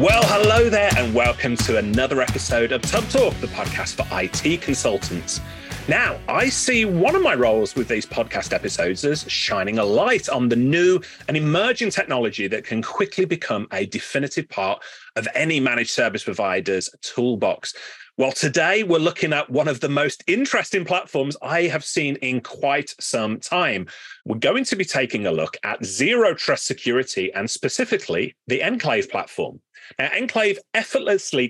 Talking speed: 165 wpm